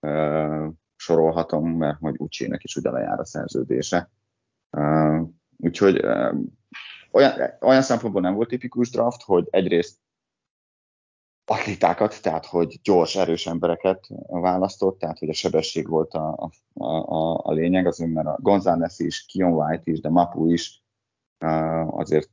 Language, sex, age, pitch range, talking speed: Hungarian, male, 30-49, 75-85 Hz, 140 wpm